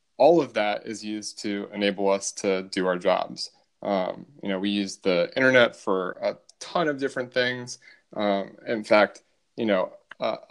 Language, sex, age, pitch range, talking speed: English, male, 20-39, 100-115 Hz, 175 wpm